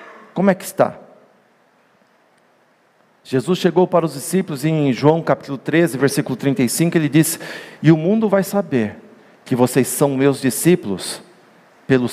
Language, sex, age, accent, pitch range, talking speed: Portuguese, male, 50-69, Brazilian, 145-200 Hz, 140 wpm